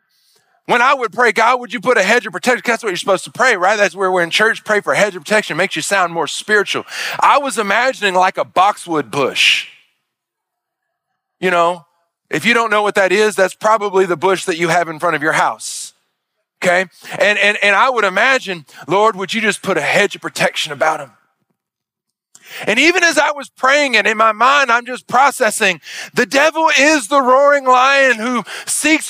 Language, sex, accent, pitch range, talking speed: English, male, American, 195-265 Hz, 210 wpm